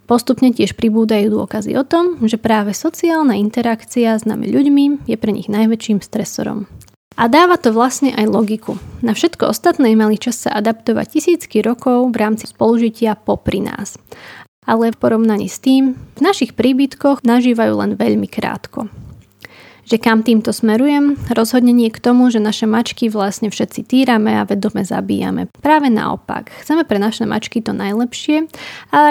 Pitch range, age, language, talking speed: 220-270 Hz, 20-39, Slovak, 155 wpm